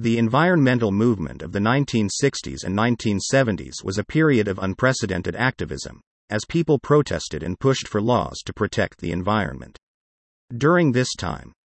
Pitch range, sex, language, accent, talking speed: 95-130 Hz, male, English, American, 145 wpm